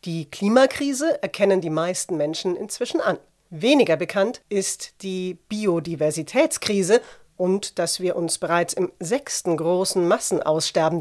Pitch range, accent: 170-230 Hz, German